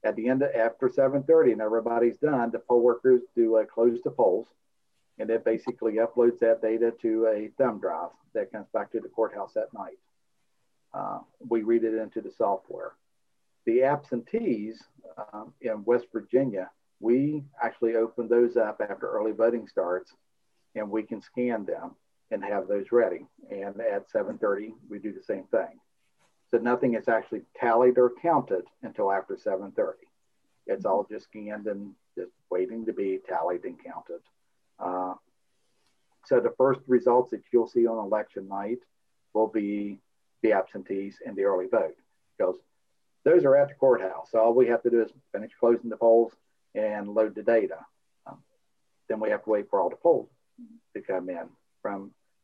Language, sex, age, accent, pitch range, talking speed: English, male, 50-69, American, 110-135 Hz, 175 wpm